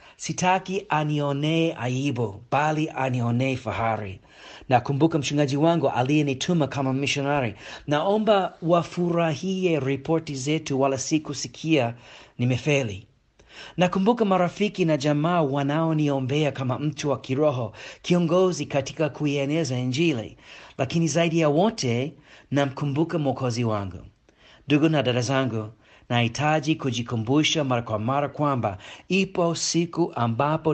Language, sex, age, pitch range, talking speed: Swahili, male, 40-59, 125-165 Hz, 100 wpm